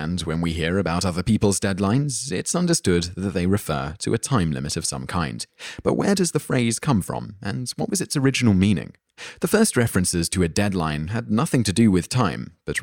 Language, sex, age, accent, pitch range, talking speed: English, male, 30-49, British, 85-110 Hz, 215 wpm